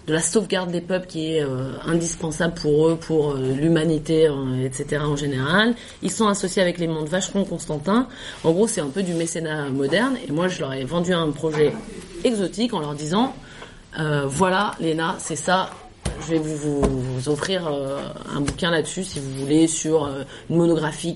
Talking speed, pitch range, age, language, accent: 195 wpm, 145-185 Hz, 30-49, French, French